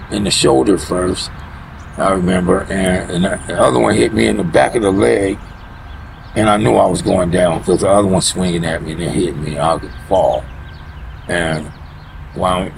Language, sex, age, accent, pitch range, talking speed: English, male, 50-69, American, 80-100 Hz, 200 wpm